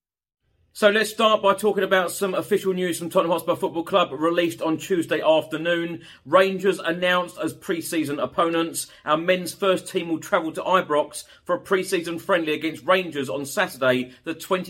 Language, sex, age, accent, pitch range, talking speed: English, male, 40-59, British, 140-175 Hz, 165 wpm